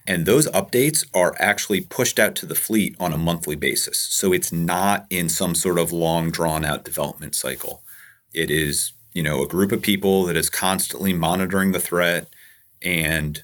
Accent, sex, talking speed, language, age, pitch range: American, male, 180 wpm, English, 30-49, 80-95 Hz